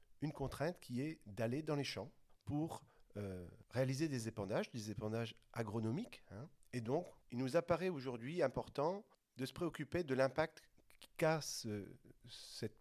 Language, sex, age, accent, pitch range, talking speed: French, male, 40-59, French, 115-150 Hz, 150 wpm